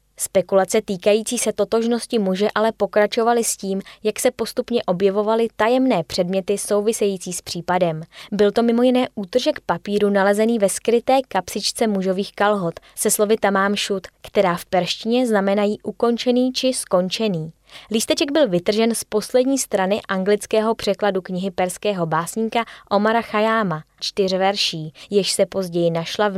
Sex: female